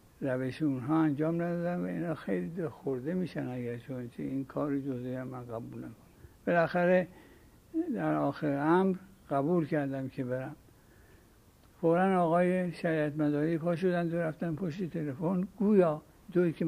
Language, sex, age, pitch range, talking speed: Persian, male, 60-79, 130-165 Hz, 135 wpm